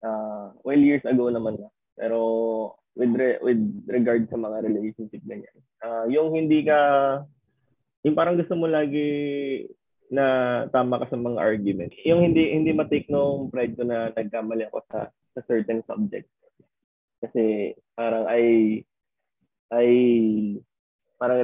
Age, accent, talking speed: 20-39, native, 135 wpm